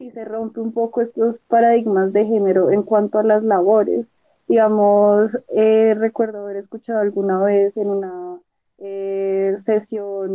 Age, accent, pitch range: 20-39, Colombian, 200-230 Hz